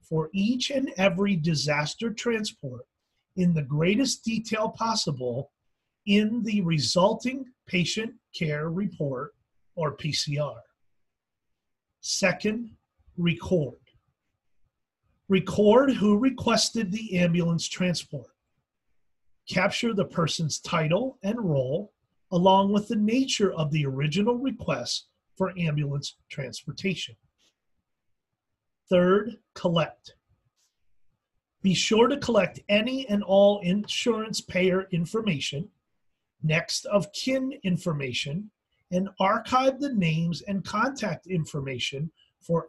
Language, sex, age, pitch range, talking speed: English, male, 40-59, 155-220 Hz, 95 wpm